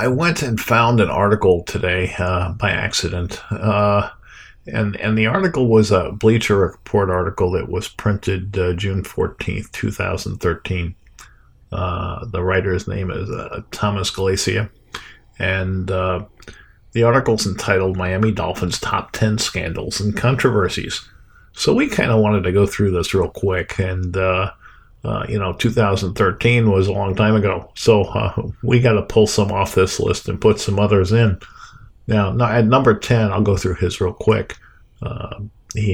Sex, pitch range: male, 90-105 Hz